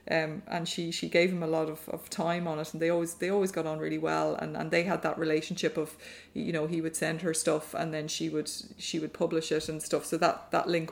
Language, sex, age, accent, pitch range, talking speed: English, female, 20-39, Irish, 155-170 Hz, 275 wpm